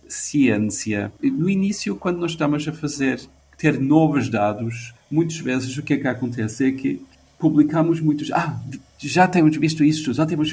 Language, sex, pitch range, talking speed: Portuguese, male, 115-150 Hz, 165 wpm